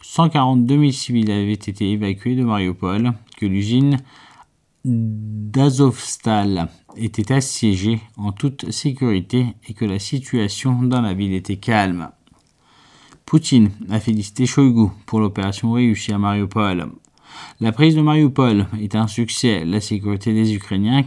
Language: French